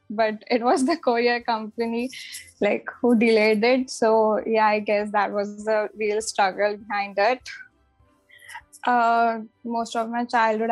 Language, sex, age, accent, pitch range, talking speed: Hindi, female, 10-29, native, 215-235 Hz, 145 wpm